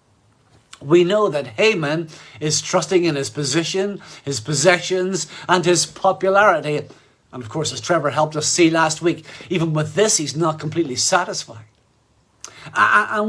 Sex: male